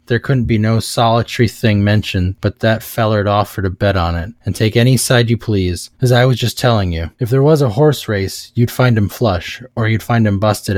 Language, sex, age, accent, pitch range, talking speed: English, male, 20-39, American, 100-120 Hz, 240 wpm